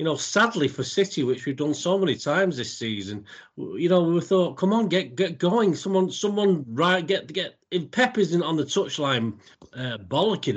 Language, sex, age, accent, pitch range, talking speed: English, male, 40-59, British, 140-195 Hz, 200 wpm